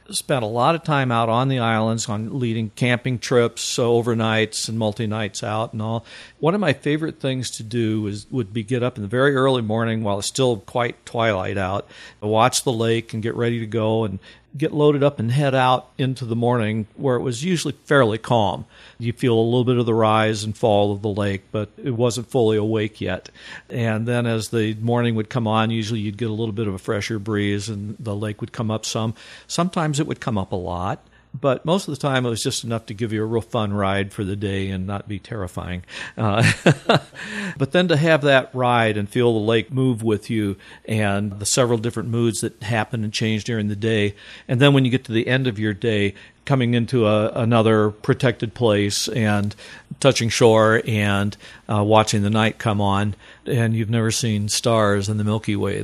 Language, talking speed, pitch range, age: English, 215 wpm, 105-125 Hz, 50-69